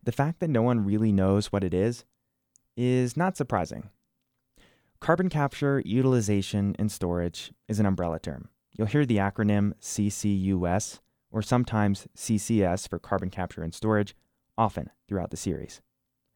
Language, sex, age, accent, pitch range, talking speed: English, male, 20-39, American, 100-125 Hz, 145 wpm